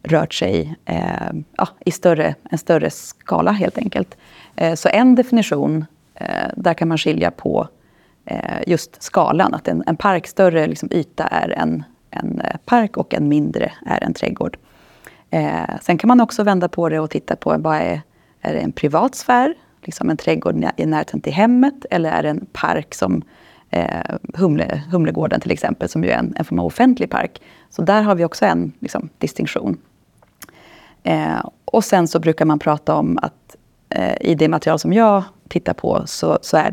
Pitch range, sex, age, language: 155-205 Hz, female, 30-49, Swedish